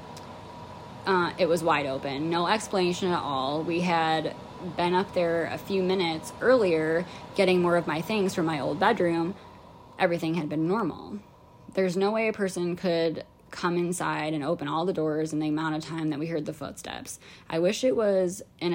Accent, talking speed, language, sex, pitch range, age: American, 190 wpm, English, female, 150-180 Hz, 10-29